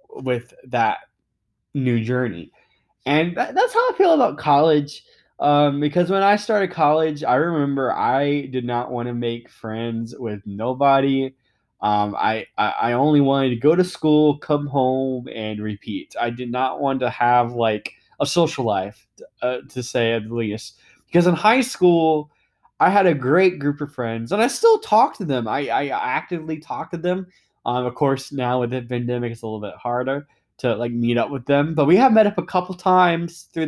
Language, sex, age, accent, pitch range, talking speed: English, male, 20-39, American, 120-160 Hz, 190 wpm